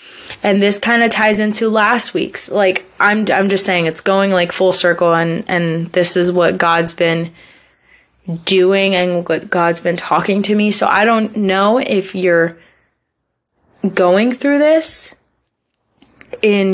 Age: 20-39